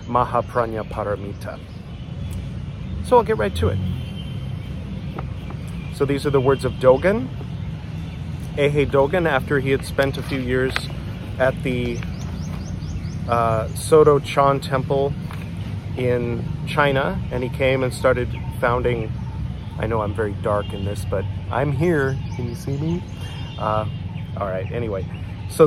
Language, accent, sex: English, American, male